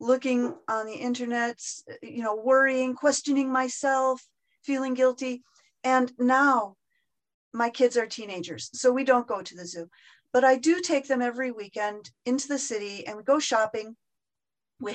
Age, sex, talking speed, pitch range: 40-59, female, 155 wpm, 220-270 Hz